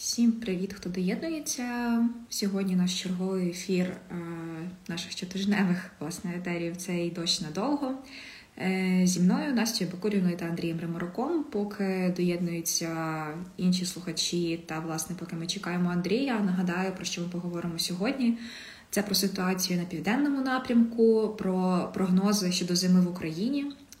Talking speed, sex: 130 wpm, female